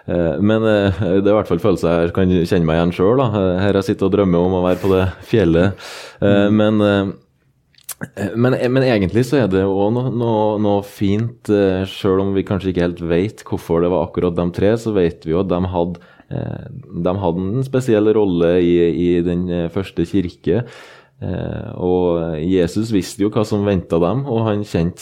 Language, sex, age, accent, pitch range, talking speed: English, male, 20-39, Norwegian, 85-105 Hz, 180 wpm